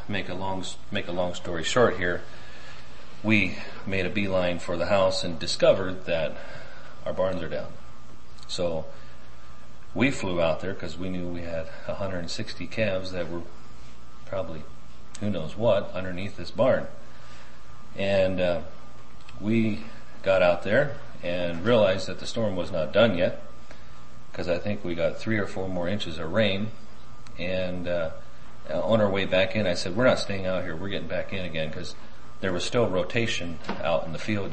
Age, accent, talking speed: 40-59, American, 175 wpm